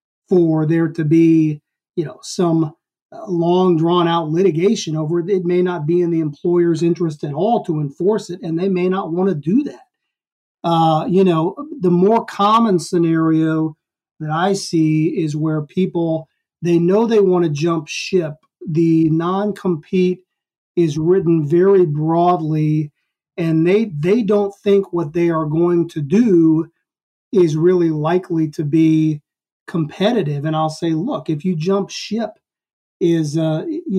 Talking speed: 155 wpm